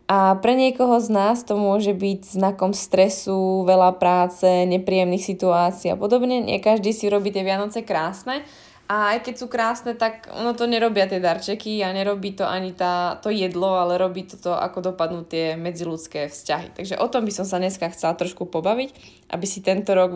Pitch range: 175-200 Hz